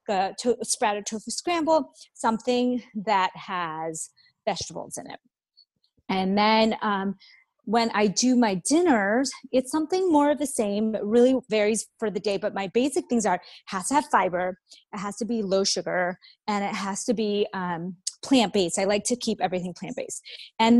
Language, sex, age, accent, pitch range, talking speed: English, female, 30-49, American, 200-265 Hz, 165 wpm